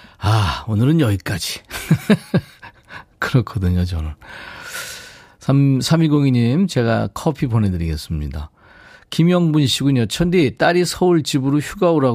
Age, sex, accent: 40-59, male, native